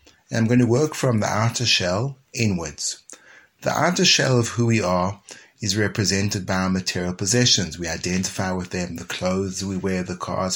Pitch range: 95-125 Hz